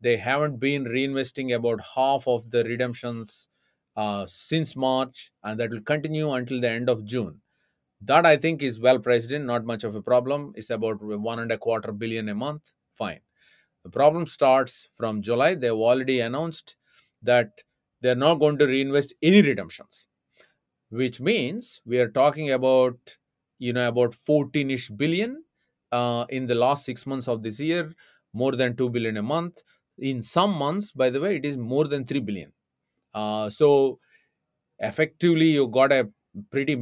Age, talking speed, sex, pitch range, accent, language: 30-49, 170 wpm, male, 115-140 Hz, Indian, English